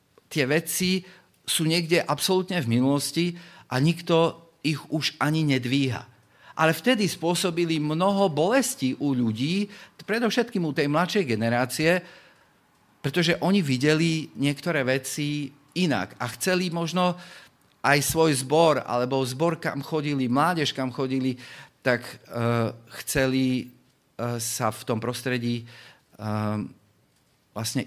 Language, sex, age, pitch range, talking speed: Slovak, male, 40-59, 120-160 Hz, 115 wpm